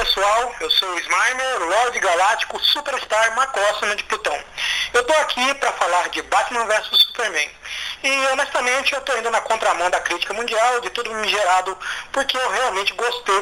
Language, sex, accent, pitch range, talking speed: Portuguese, male, Brazilian, 205-270 Hz, 175 wpm